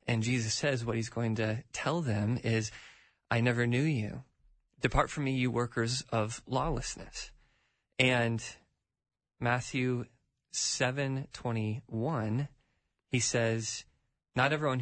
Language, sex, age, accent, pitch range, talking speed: English, male, 20-39, American, 110-130 Hz, 120 wpm